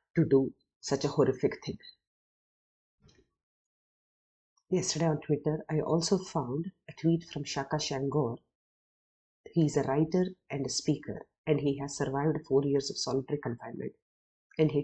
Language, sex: English, female